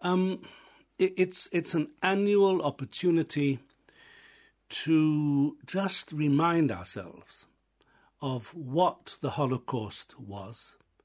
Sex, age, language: male, 60-79, English